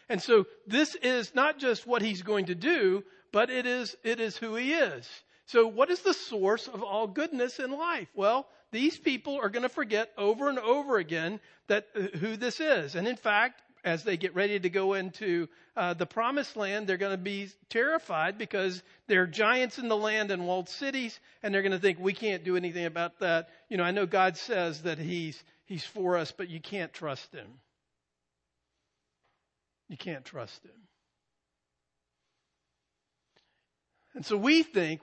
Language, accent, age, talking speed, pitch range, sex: English, American, 50-69, 185 wpm, 160-225 Hz, male